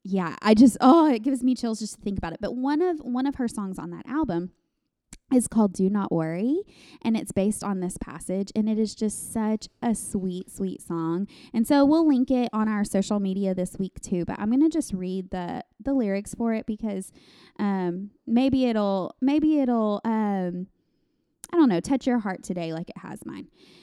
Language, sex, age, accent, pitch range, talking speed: English, female, 20-39, American, 190-245 Hz, 210 wpm